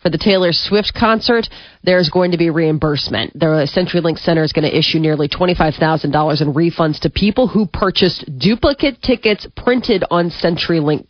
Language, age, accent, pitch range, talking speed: English, 30-49, American, 160-210 Hz, 160 wpm